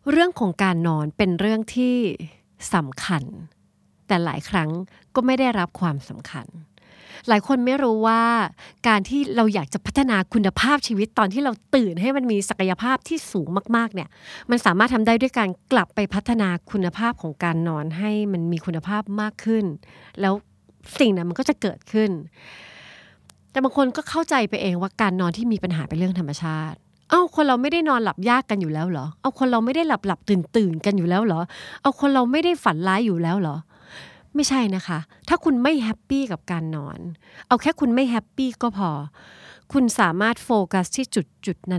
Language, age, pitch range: Thai, 30-49, 175-245 Hz